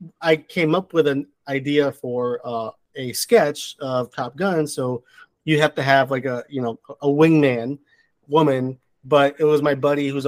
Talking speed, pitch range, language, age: 180 wpm, 135-160 Hz, English, 30-49